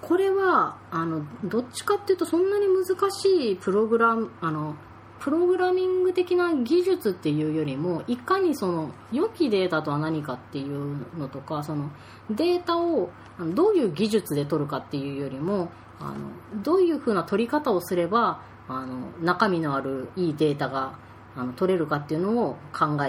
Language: Japanese